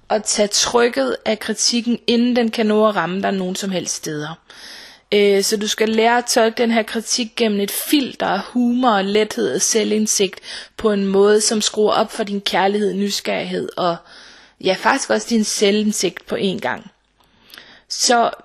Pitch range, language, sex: 200-240 Hz, Danish, female